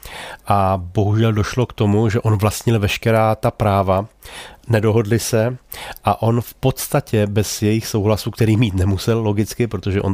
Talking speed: 155 wpm